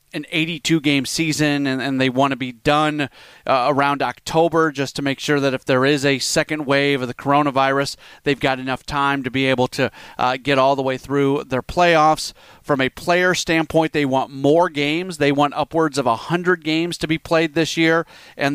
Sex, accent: male, American